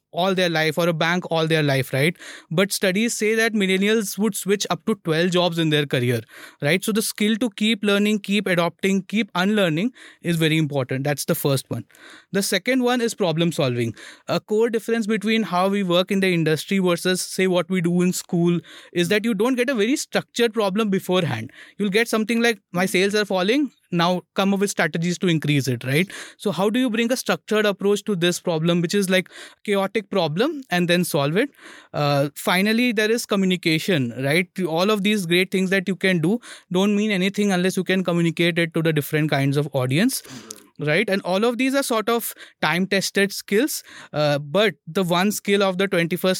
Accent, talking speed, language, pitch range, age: Indian, 205 wpm, English, 170-210 Hz, 20-39